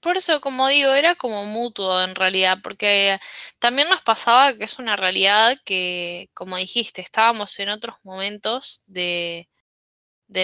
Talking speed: 150 wpm